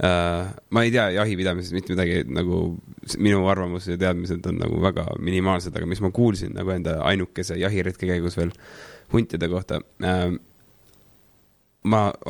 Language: English